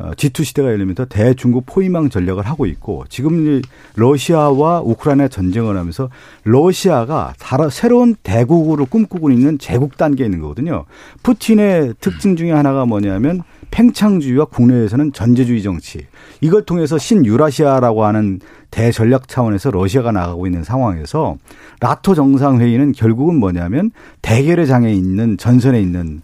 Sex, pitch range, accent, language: male, 110-160 Hz, native, Korean